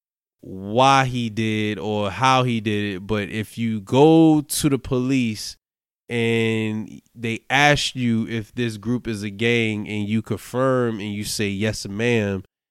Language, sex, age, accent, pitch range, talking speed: English, male, 20-39, American, 115-155 Hz, 155 wpm